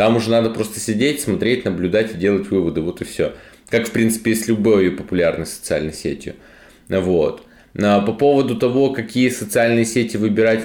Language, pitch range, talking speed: Russian, 90-110 Hz, 170 wpm